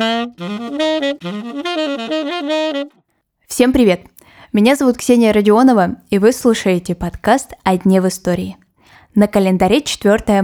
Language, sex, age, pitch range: Russian, female, 10-29, 185-235 Hz